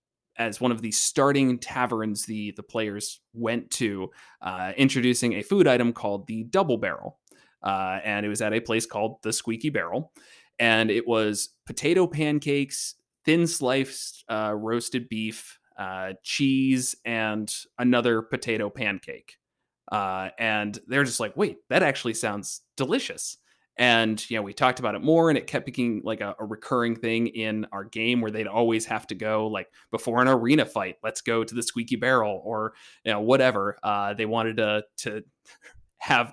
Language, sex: English, male